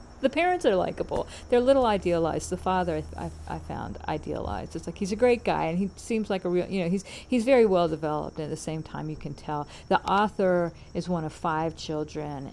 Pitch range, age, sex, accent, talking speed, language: 155-210 Hz, 50-69, female, American, 215 wpm, English